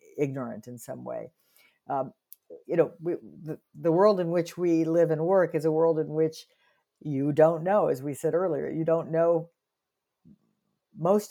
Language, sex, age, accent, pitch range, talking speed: English, female, 50-69, American, 135-170 Hz, 170 wpm